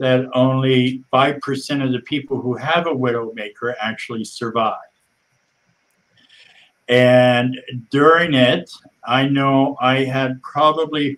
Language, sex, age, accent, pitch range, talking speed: English, male, 50-69, American, 120-135 Hz, 105 wpm